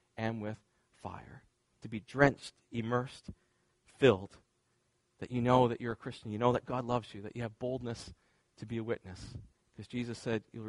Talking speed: 185 wpm